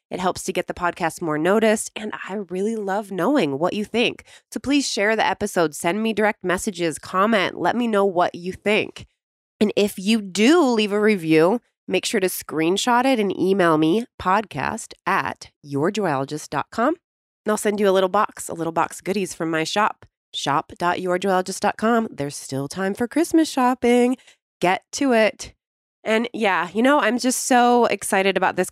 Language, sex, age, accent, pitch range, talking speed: English, female, 20-39, American, 155-215 Hz, 180 wpm